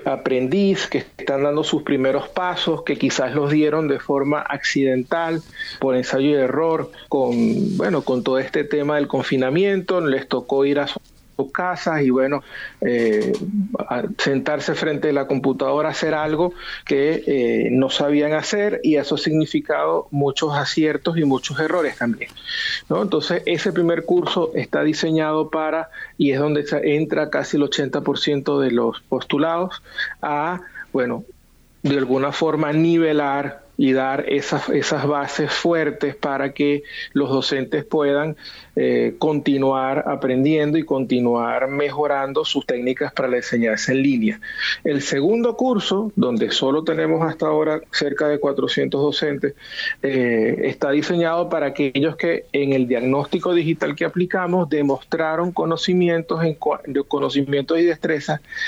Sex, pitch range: male, 140-165 Hz